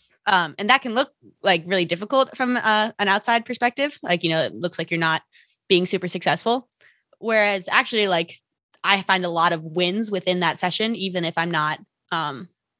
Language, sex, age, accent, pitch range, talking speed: English, female, 20-39, American, 170-200 Hz, 190 wpm